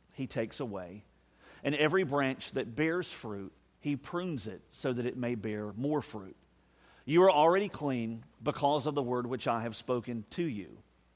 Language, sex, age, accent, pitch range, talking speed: English, male, 50-69, American, 110-145 Hz, 175 wpm